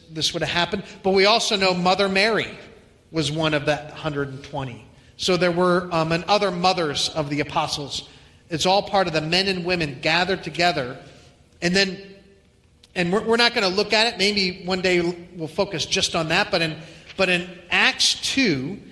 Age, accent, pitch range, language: 40-59, American, 155-195 Hz, English